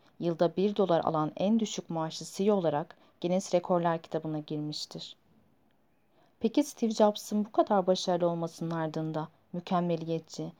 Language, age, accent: Turkish, 40-59, native